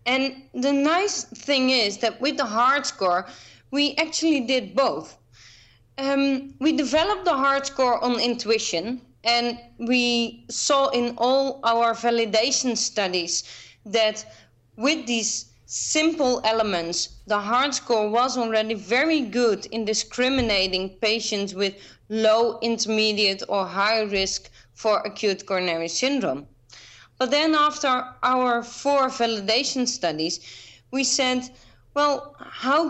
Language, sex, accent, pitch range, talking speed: English, female, Dutch, 205-270 Hz, 120 wpm